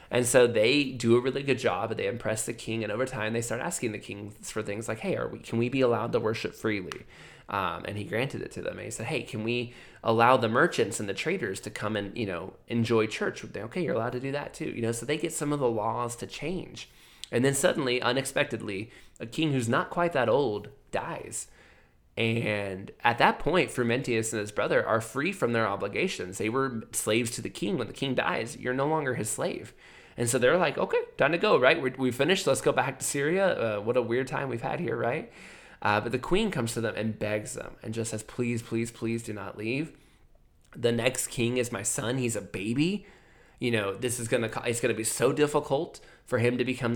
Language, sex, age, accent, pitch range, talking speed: English, male, 20-39, American, 110-130 Hz, 235 wpm